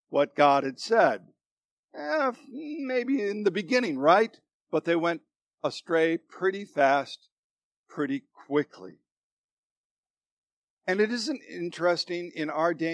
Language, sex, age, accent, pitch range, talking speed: English, male, 50-69, American, 155-225 Hz, 115 wpm